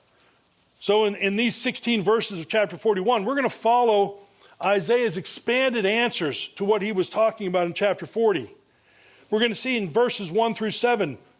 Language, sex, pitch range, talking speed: English, male, 155-220 Hz, 170 wpm